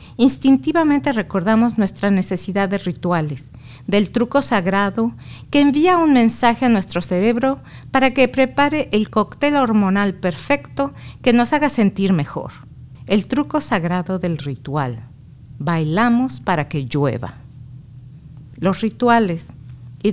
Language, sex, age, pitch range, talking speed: English, female, 50-69, 160-245 Hz, 120 wpm